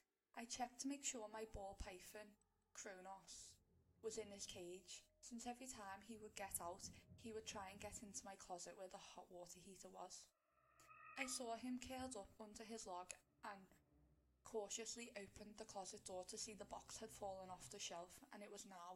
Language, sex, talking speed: English, female, 195 wpm